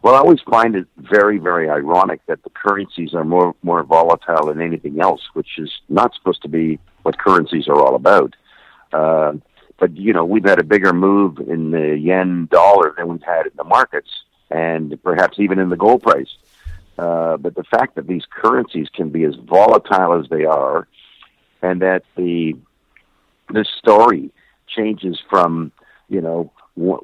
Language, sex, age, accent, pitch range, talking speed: English, male, 50-69, American, 85-100 Hz, 175 wpm